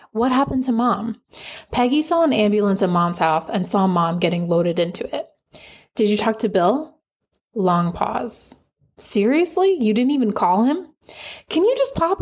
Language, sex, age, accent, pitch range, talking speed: English, female, 20-39, American, 185-245 Hz, 170 wpm